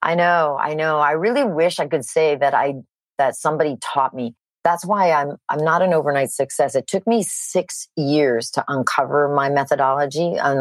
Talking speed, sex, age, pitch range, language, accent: 190 wpm, female, 40-59, 135-170 Hz, English, American